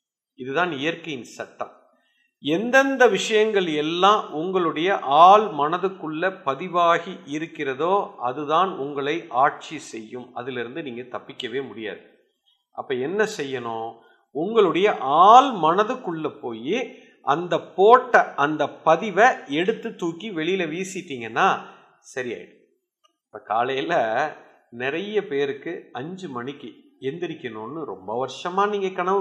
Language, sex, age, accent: Tamil, male, 50-69, native